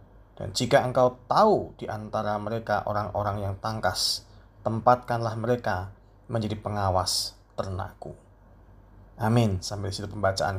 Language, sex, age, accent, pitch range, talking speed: Indonesian, male, 20-39, native, 100-125 Hz, 110 wpm